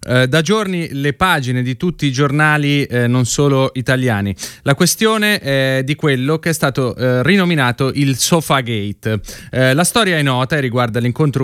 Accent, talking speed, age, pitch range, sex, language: native, 175 wpm, 30-49, 130-160 Hz, male, Italian